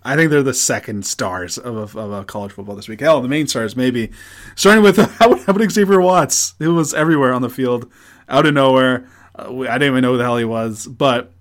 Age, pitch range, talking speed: 20-39, 105-150 Hz, 245 wpm